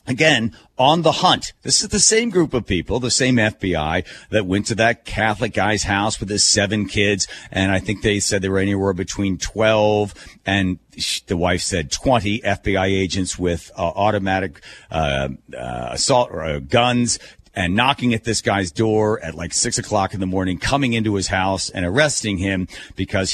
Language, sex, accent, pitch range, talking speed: English, male, American, 90-110 Hz, 185 wpm